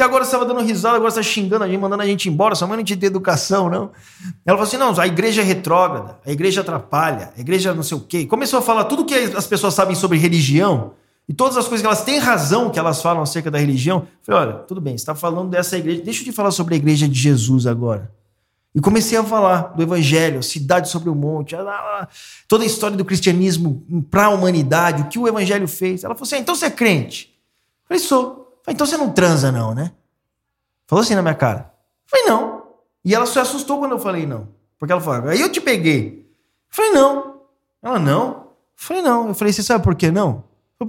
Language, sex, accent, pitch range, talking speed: Portuguese, male, Brazilian, 150-220 Hz, 230 wpm